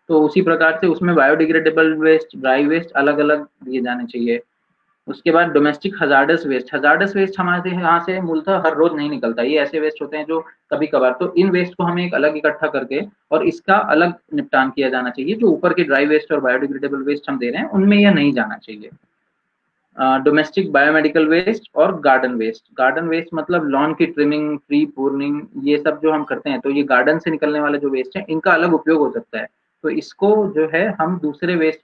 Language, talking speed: Marathi, 210 wpm